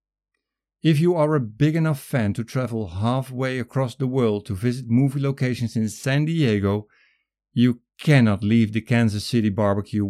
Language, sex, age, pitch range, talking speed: English, male, 50-69, 100-130 Hz, 160 wpm